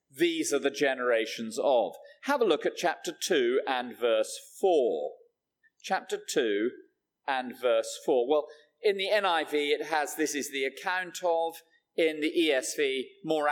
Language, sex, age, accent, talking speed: English, male, 40-59, British, 150 wpm